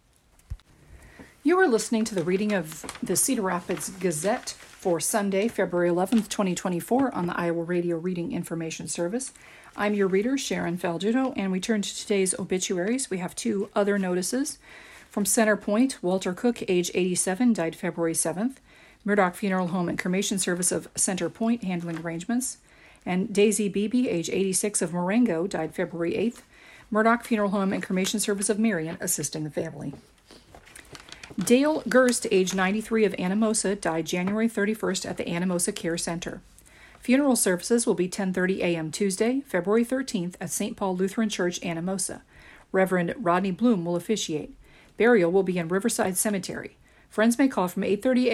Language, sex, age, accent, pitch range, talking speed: English, female, 40-59, American, 180-220 Hz, 155 wpm